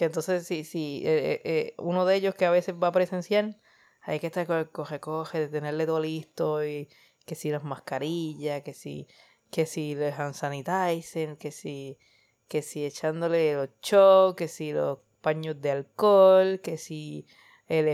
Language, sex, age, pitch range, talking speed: Spanish, female, 20-39, 165-190 Hz, 165 wpm